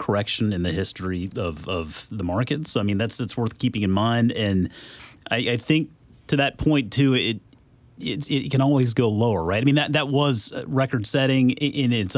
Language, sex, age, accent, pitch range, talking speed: English, male, 30-49, American, 105-140 Hz, 205 wpm